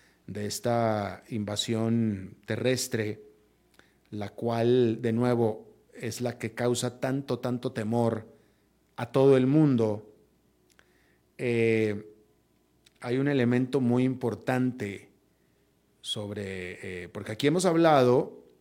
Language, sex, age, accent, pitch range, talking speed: Spanish, male, 40-59, Mexican, 110-130 Hz, 100 wpm